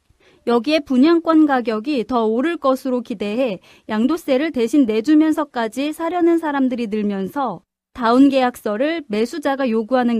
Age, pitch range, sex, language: 30-49, 235-310 Hz, female, Korean